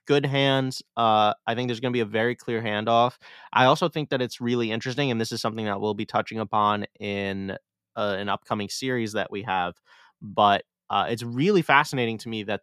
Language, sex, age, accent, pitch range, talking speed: English, male, 20-39, American, 105-130 Hz, 215 wpm